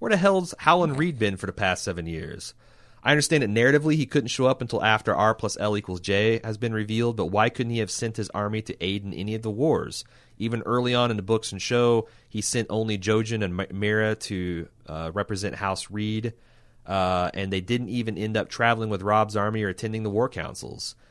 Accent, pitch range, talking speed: American, 95-115 Hz, 225 wpm